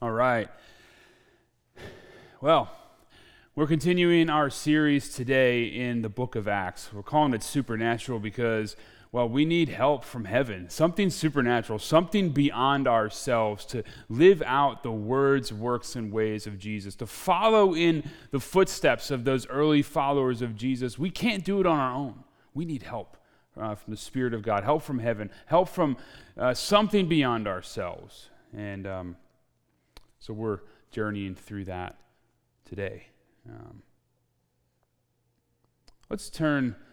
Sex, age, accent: male, 30-49, American